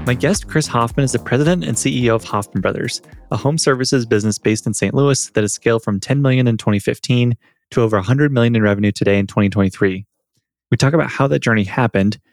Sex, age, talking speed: male, 20-39, 215 wpm